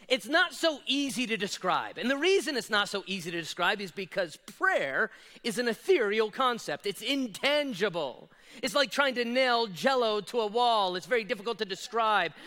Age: 40-59